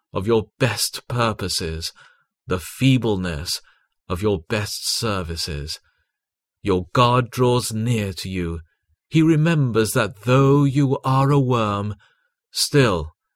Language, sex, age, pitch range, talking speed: English, male, 40-59, 105-140 Hz, 110 wpm